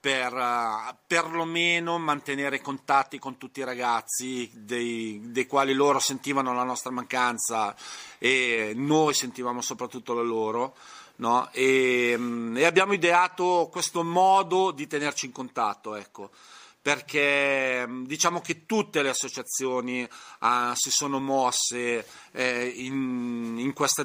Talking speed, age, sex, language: 120 wpm, 40-59, male, Italian